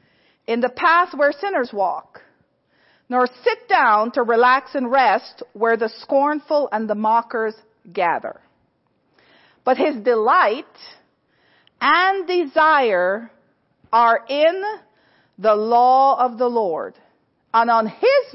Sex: female